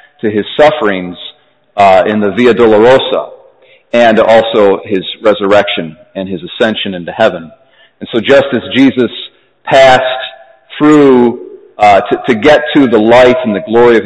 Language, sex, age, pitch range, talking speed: English, male, 40-59, 115-165 Hz, 150 wpm